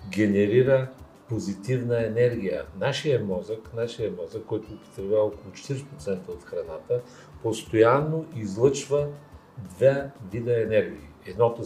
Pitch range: 105-150 Hz